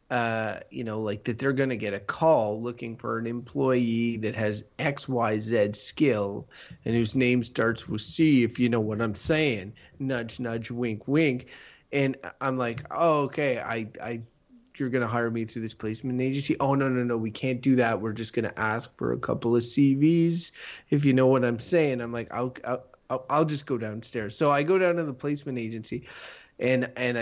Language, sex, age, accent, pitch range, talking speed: English, male, 30-49, American, 115-140 Hz, 205 wpm